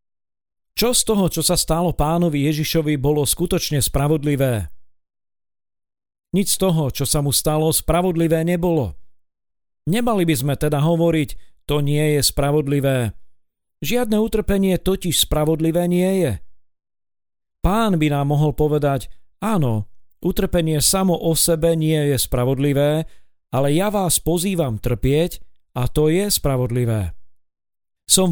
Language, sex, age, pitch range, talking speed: Slovak, male, 40-59, 135-170 Hz, 125 wpm